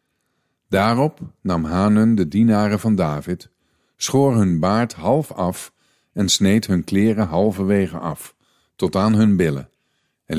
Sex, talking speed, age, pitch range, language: male, 135 wpm, 50-69, 90-120 Hz, Dutch